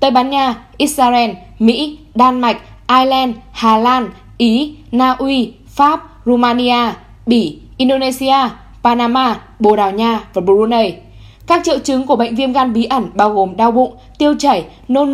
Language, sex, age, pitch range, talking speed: Vietnamese, female, 10-29, 225-280 Hz, 155 wpm